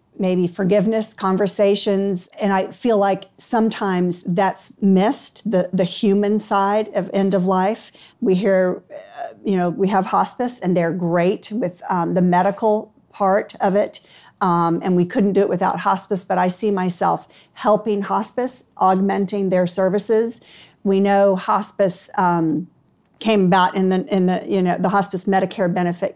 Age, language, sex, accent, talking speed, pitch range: 50-69, English, female, American, 160 wpm, 180-205 Hz